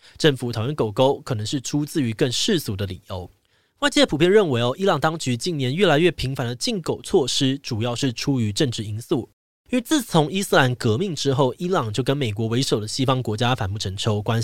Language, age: Chinese, 20-39